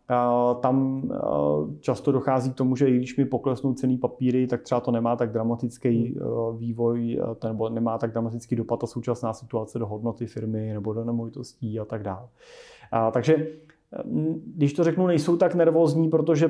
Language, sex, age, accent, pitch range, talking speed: Czech, male, 30-49, native, 120-150 Hz, 160 wpm